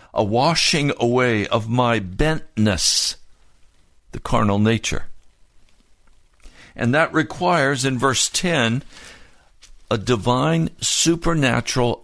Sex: male